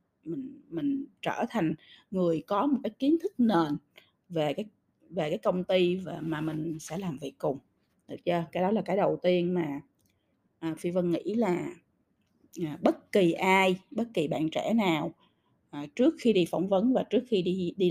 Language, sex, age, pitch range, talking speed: Vietnamese, female, 20-39, 170-265 Hz, 195 wpm